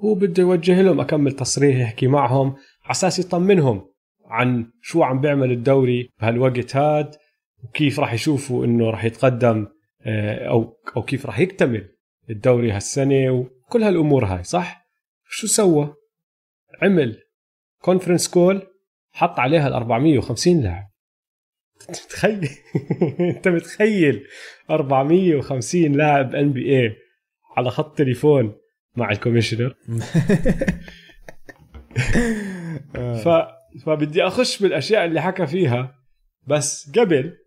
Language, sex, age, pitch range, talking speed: Arabic, male, 30-49, 125-180 Hz, 100 wpm